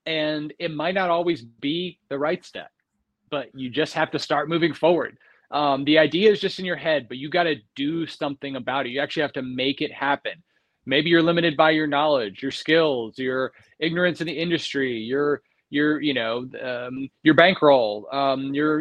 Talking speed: 200 wpm